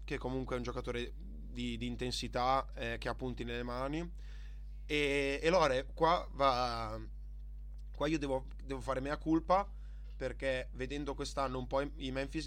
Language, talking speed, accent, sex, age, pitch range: Italian, 160 wpm, native, male, 20-39, 115-145 Hz